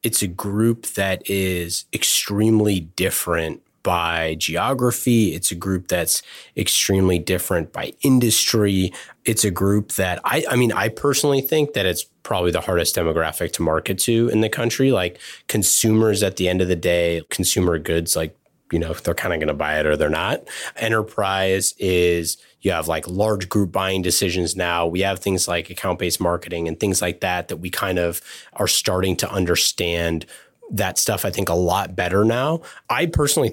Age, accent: 30-49, American